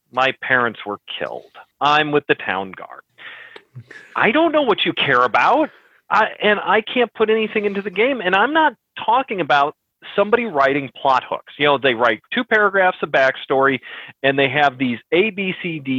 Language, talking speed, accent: English, 175 wpm, American